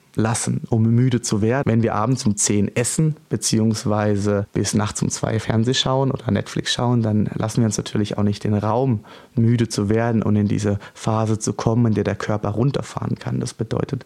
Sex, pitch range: male, 115-145 Hz